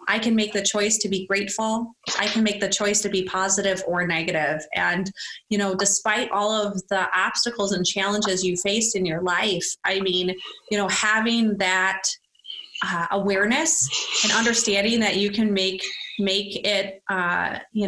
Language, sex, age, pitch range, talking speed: English, female, 30-49, 195-225 Hz, 175 wpm